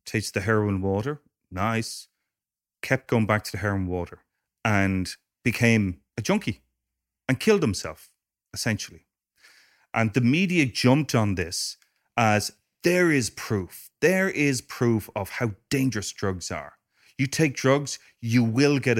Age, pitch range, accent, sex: 30-49, 100-130 Hz, Irish, male